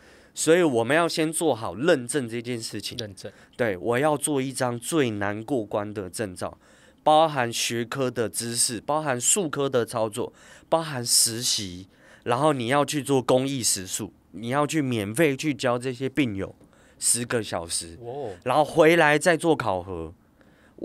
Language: Chinese